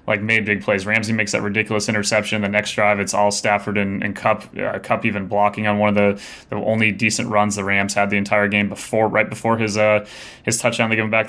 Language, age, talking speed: English, 20-39, 245 wpm